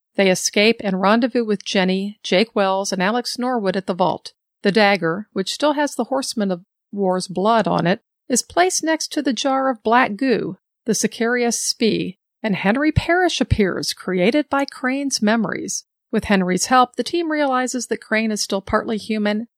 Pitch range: 195-245 Hz